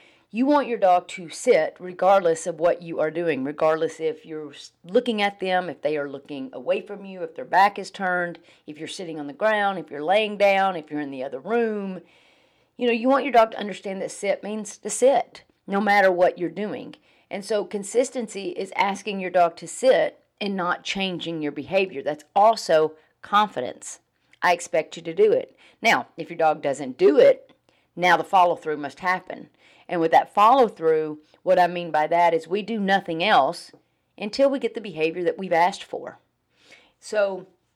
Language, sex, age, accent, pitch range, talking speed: English, female, 40-59, American, 165-210 Hz, 195 wpm